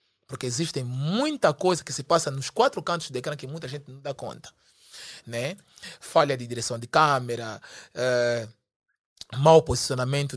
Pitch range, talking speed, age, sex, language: 130-170 Hz, 155 wpm, 20-39, male, Portuguese